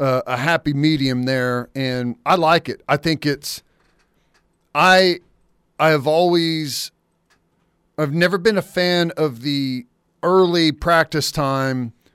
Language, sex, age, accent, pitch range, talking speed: English, male, 40-59, American, 140-165 Hz, 140 wpm